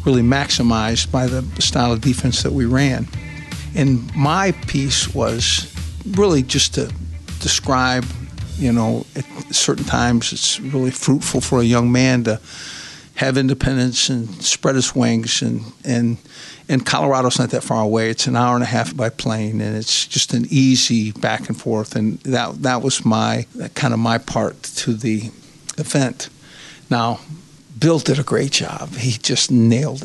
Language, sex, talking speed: English, male, 165 wpm